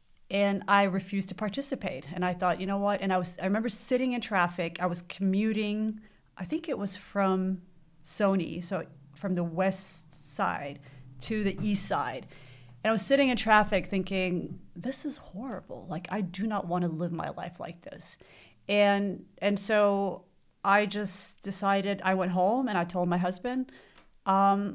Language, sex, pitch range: English, female, 175-205 Hz